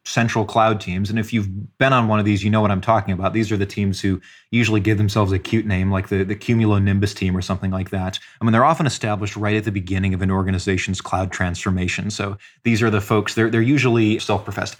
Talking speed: 245 wpm